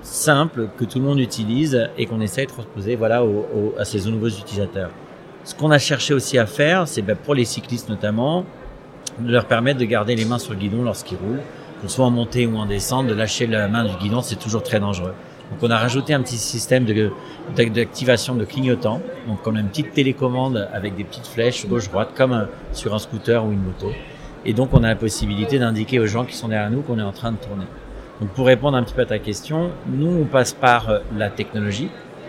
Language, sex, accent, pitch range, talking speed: French, male, French, 110-130 Hz, 230 wpm